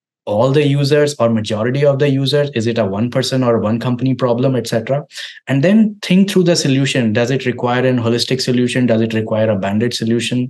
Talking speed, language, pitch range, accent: 205 wpm, English, 115-130 Hz, Indian